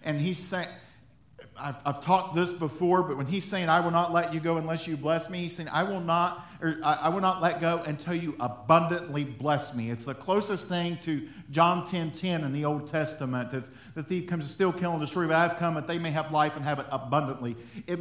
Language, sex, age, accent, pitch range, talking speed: English, male, 50-69, American, 155-195 Hz, 230 wpm